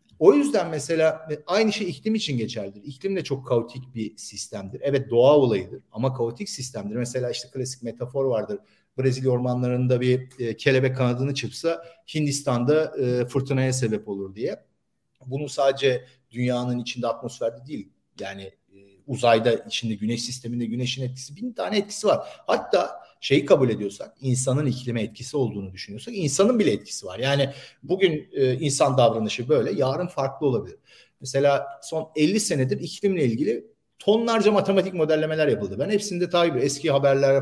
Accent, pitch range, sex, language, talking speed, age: native, 125-195 Hz, male, Turkish, 145 wpm, 50-69